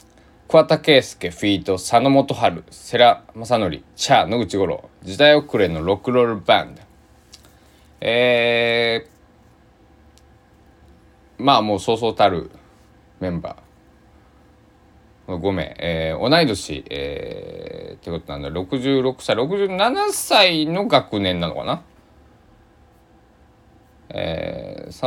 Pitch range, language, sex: 85-125 Hz, Japanese, male